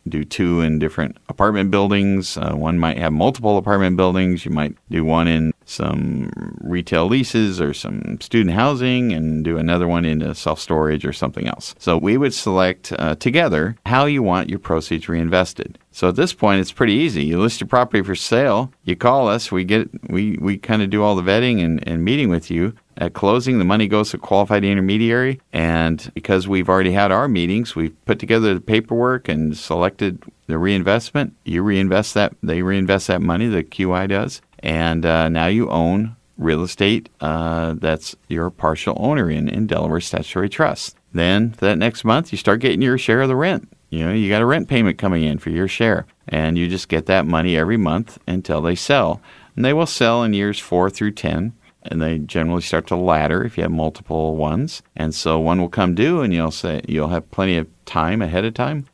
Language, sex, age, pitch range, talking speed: English, male, 40-59, 80-105 Hz, 205 wpm